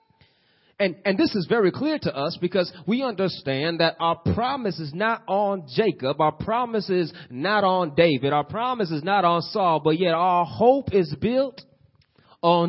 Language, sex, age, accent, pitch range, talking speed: English, male, 30-49, American, 170-235 Hz, 175 wpm